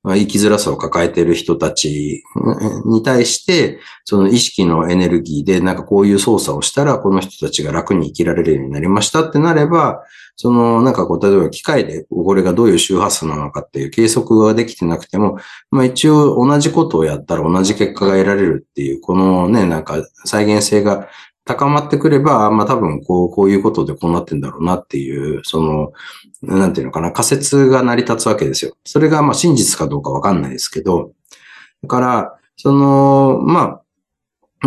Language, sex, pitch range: Japanese, male, 85-125 Hz